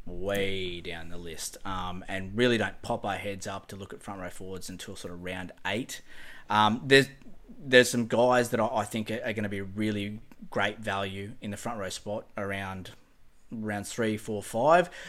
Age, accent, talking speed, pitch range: 20-39, Australian, 195 wpm, 100-115 Hz